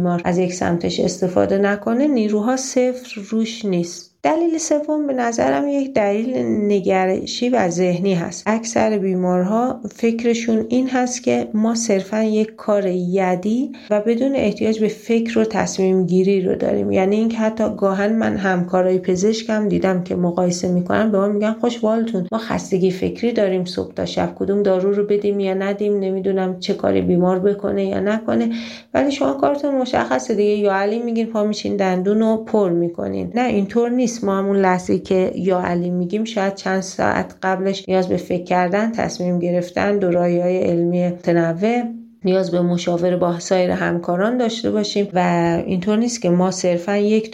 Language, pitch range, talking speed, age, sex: Persian, 180-220 Hz, 160 wpm, 40-59, female